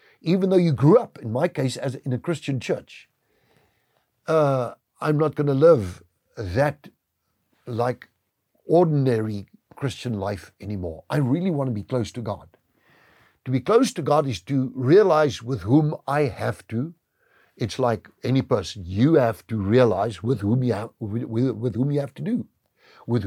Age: 60-79